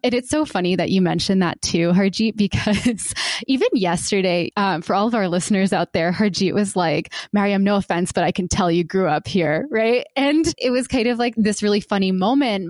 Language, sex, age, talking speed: English, female, 20-39, 215 wpm